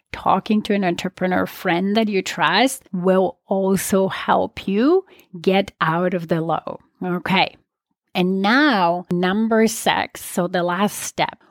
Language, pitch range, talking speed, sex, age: English, 180-220 Hz, 135 wpm, female, 30-49